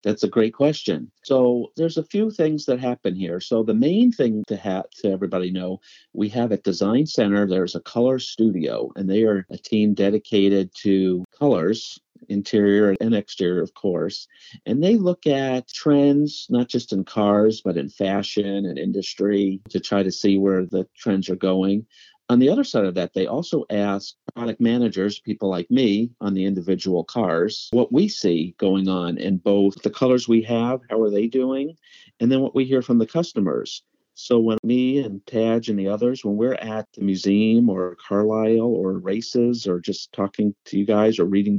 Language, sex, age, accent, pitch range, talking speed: English, male, 50-69, American, 95-115 Hz, 190 wpm